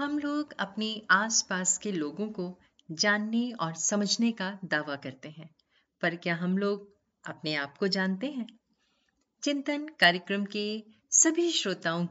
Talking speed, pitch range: 140 wpm, 170-265 Hz